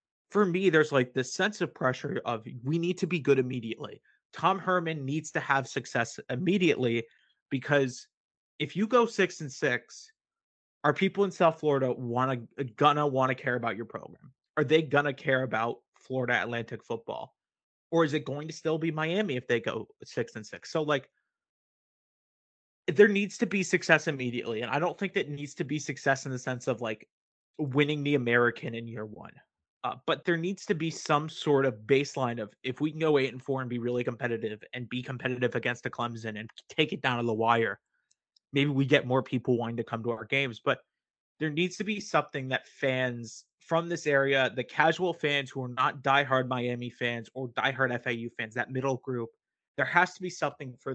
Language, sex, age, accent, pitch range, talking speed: English, male, 30-49, American, 125-155 Hz, 205 wpm